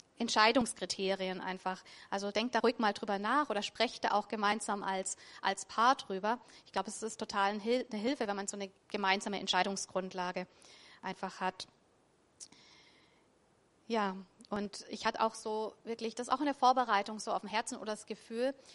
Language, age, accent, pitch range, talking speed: German, 30-49, German, 200-235 Hz, 175 wpm